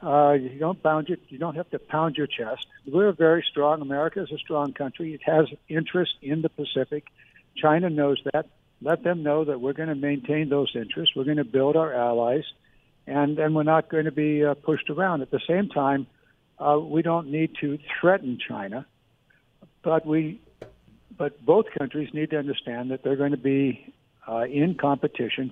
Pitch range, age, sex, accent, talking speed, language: 130-160 Hz, 60-79, male, American, 185 wpm, English